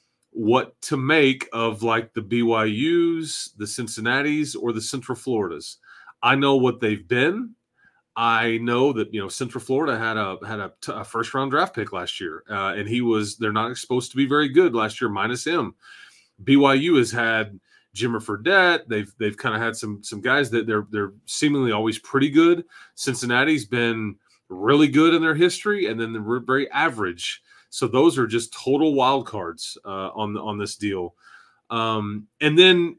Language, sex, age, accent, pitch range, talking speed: English, male, 30-49, American, 110-140 Hz, 180 wpm